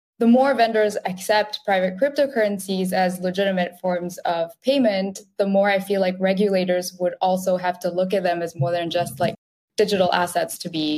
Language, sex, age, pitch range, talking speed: English, female, 20-39, 175-200 Hz, 180 wpm